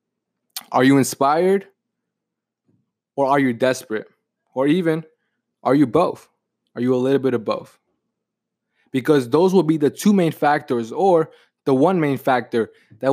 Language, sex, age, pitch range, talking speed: English, male, 20-39, 125-155 Hz, 150 wpm